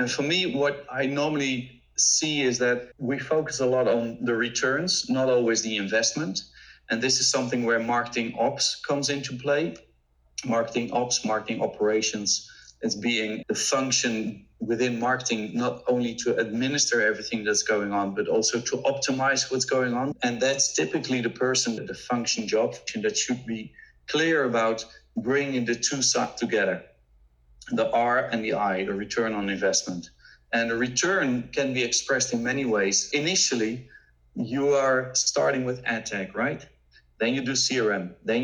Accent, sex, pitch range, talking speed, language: Dutch, male, 110-135 Hz, 165 wpm, English